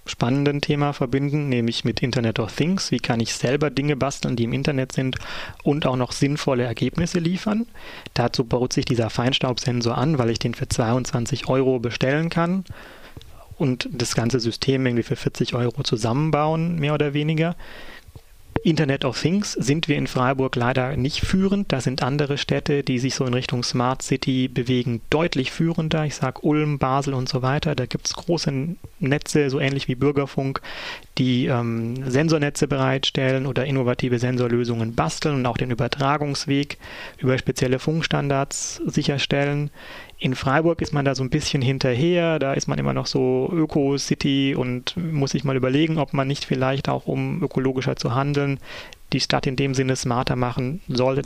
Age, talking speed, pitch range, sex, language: 30-49, 170 wpm, 125-150 Hz, male, German